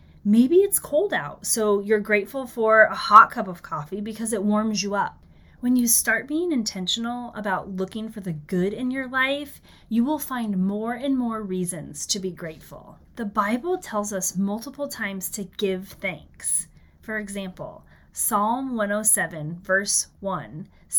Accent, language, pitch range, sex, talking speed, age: American, English, 185-235 Hz, female, 160 wpm, 30-49